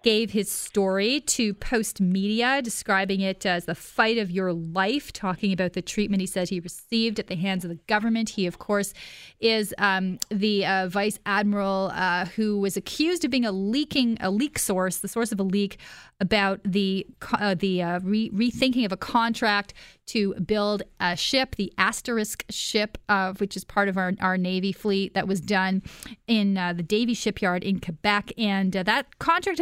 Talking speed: 190 wpm